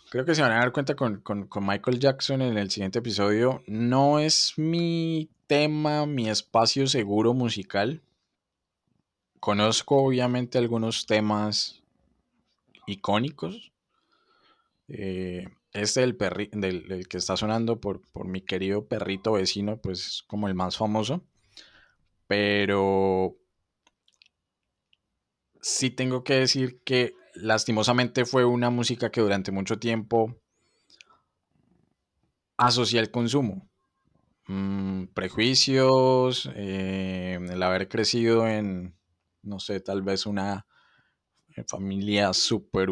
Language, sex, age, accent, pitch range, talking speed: Spanish, male, 20-39, Colombian, 100-125 Hz, 110 wpm